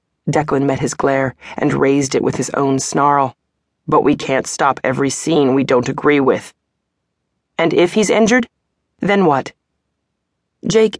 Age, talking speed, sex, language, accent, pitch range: 20-39, 155 wpm, female, English, American, 135-160 Hz